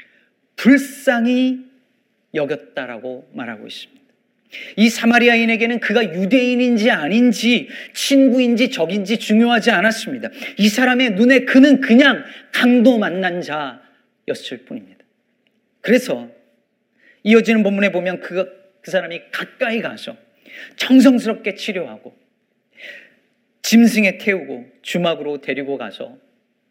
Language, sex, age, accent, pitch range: Korean, male, 40-59, native, 185-250 Hz